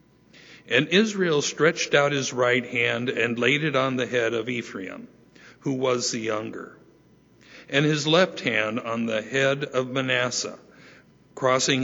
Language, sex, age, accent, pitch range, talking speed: English, male, 60-79, American, 120-145 Hz, 145 wpm